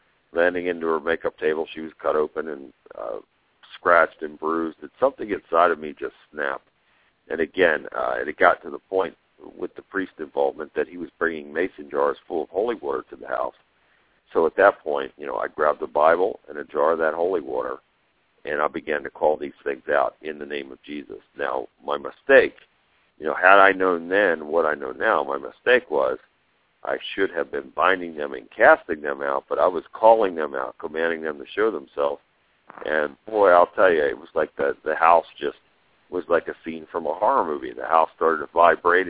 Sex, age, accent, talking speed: male, 50-69, American, 210 wpm